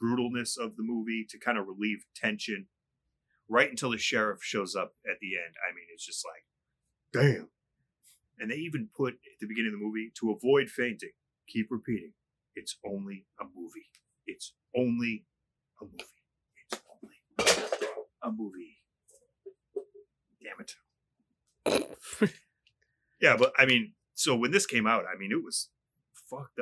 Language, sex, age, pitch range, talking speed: English, male, 30-49, 110-160 Hz, 150 wpm